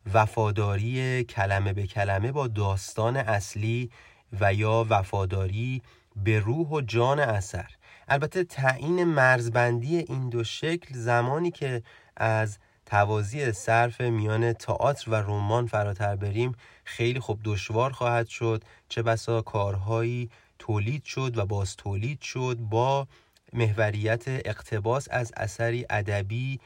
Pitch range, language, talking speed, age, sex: 105-125 Hz, Persian, 115 wpm, 30-49, male